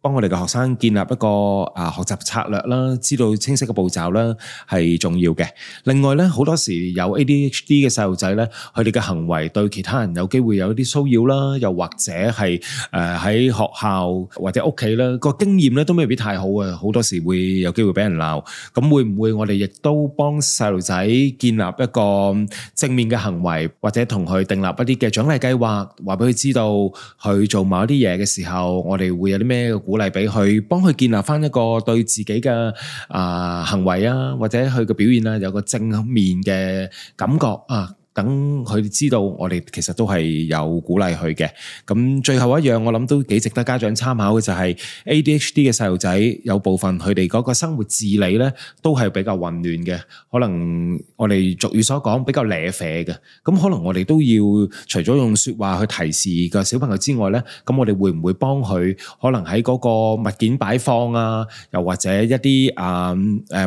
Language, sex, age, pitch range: Chinese, male, 20-39, 95-125 Hz